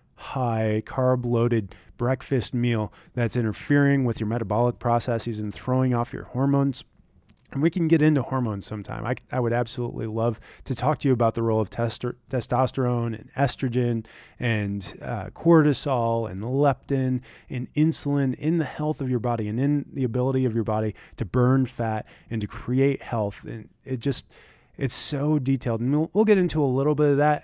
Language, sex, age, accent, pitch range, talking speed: English, male, 20-39, American, 115-140 Hz, 180 wpm